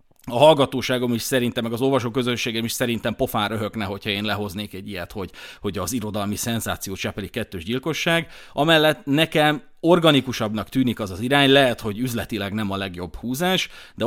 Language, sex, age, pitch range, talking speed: Hungarian, male, 30-49, 105-135 Hz, 170 wpm